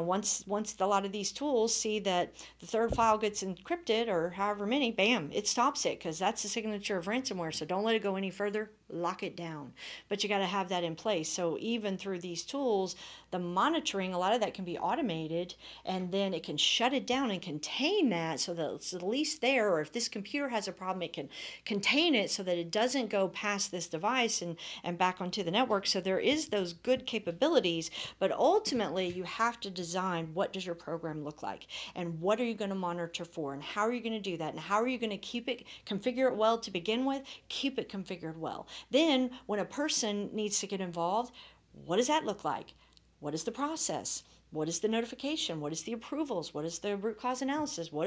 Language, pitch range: English, 175-235 Hz